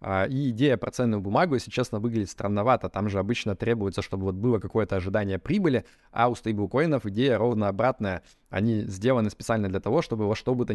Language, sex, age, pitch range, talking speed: Russian, male, 20-39, 100-125 Hz, 195 wpm